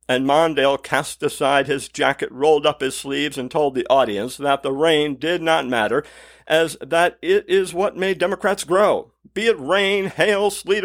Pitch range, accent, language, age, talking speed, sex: 130-175 Hz, American, English, 50-69, 185 wpm, male